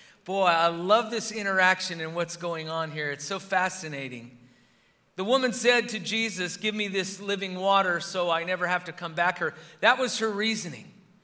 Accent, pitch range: American, 180-220 Hz